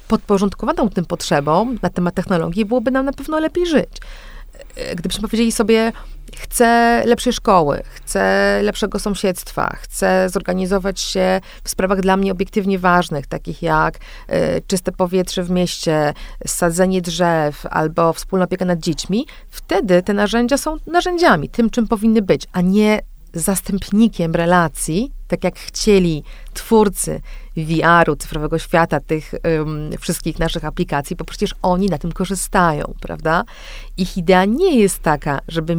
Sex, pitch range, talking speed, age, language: female, 170-210 Hz, 135 wpm, 40-59, English